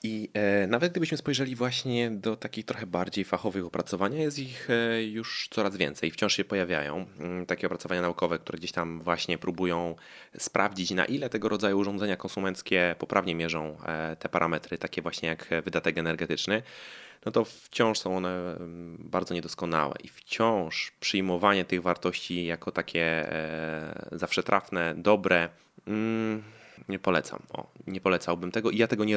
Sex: male